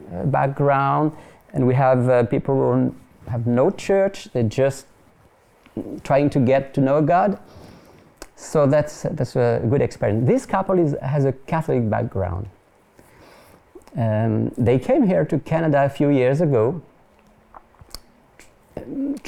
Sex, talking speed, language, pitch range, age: male, 135 wpm, English, 120-175 Hz, 40-59